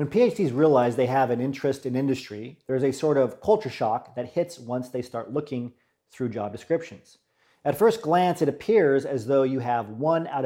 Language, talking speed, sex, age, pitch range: English, 205 wpm, male, 40-59, 125-150 Hz